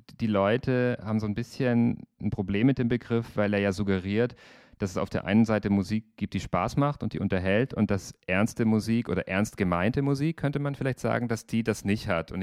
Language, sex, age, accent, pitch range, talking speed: German, male, 40-59, German, 100-120 Hz, 225 wpm